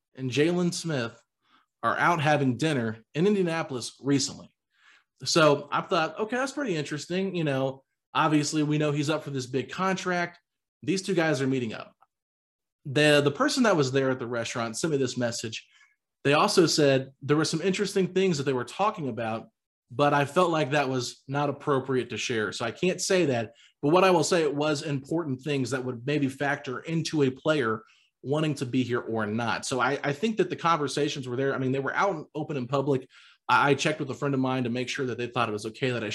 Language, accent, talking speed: English, American, 220 wpm